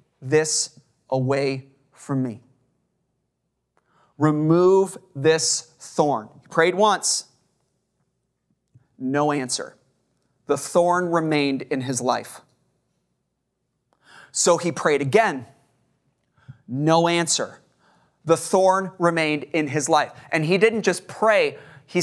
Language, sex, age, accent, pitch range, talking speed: English, male, 30-49, American, 150-230 Hz, 100 wpm